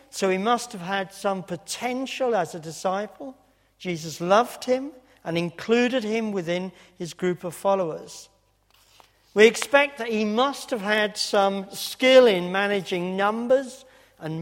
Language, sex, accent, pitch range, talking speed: English, male, British, 160-225 Hz, 140 wpm